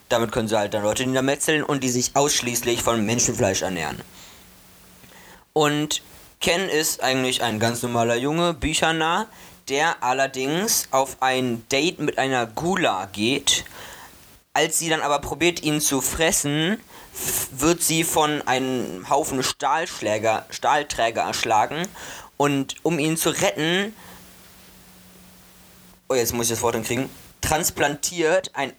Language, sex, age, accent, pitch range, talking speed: German, male, 20-39, German, 120-155 Hz, 130 wpm